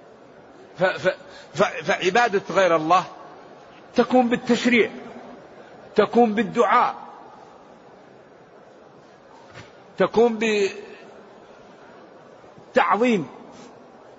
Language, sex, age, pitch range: Arabic, male, 50-69, 195-225 Hz